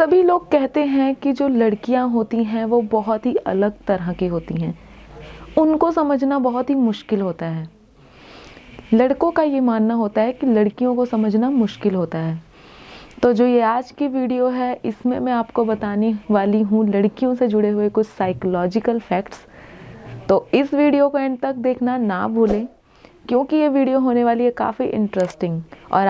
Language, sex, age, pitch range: Hindi, female, 30-49, 205-250 Hz